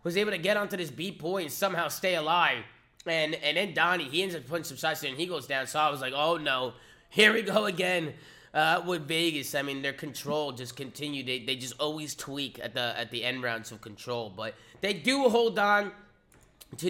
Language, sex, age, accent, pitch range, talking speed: English, male, 20-39, American, 130-165 Hz, 225 wpm